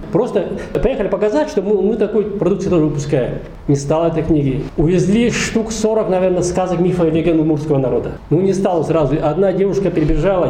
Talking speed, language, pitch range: 170 wpm, Russian, 150-185 Hz